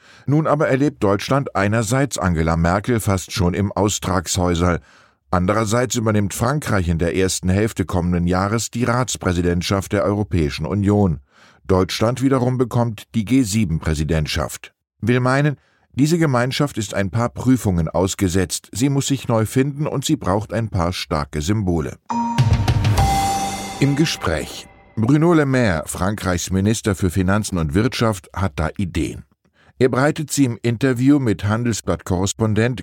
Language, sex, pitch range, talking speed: German, male, 90-125 Hz, 130 wpm